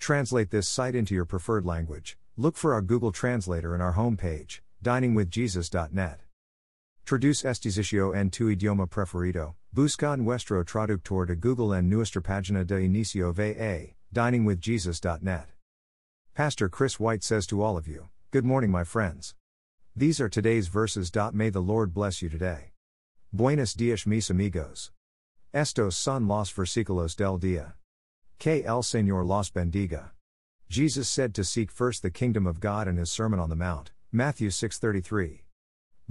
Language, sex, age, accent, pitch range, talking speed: English, male, 50-69, American, 90-115 Hz, 150 wpm